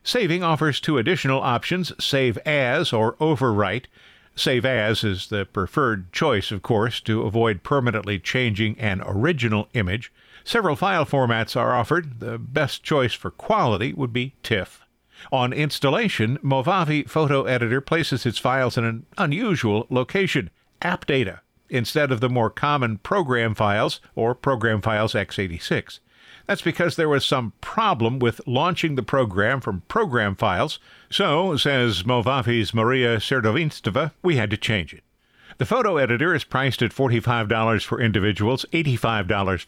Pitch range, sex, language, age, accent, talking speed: 105-140 Hz, male, English, 50-69, American, 140 wpm